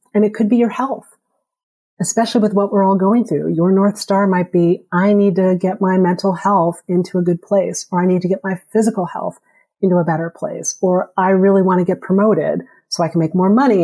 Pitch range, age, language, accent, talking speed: 175-205 Hz, 40-59, English, American, 235 wpm